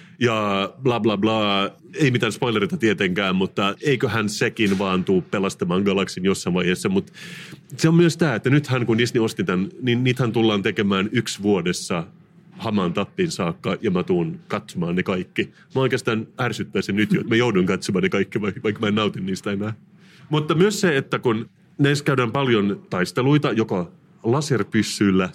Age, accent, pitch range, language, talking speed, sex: 30-49, native, 100-165 Hz, Finnish, 170 wpm, male